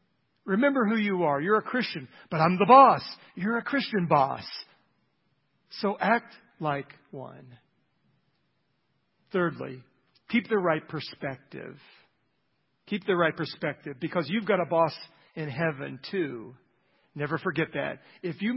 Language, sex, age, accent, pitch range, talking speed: English, male, 50-69, American, 140-185 Hz, 135 wpm